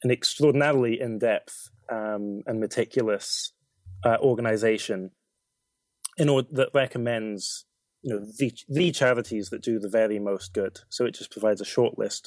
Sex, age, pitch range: male, 20-39, 105-125 Hz